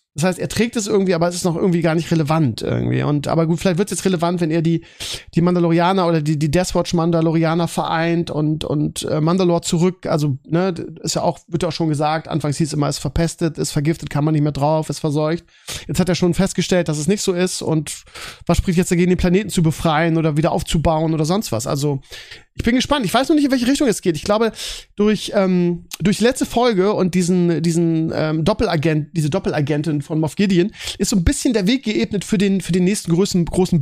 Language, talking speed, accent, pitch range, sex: German, 235 wpm, German, 155-190 Hz, male